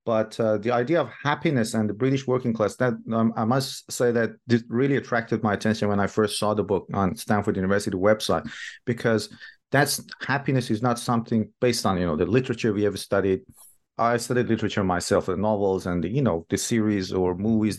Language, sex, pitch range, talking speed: English, male, 105-125 Hz, 205 wpm